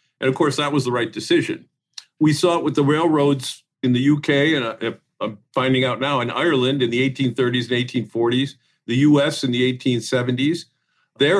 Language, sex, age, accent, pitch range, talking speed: English, male, 50-69, American, 125-155 Hz, 190 wpm